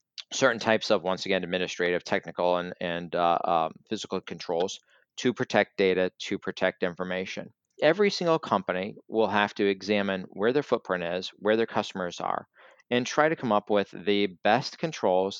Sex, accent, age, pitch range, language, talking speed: male, American, 40-59, 95-120 Hz, English, 170 wpm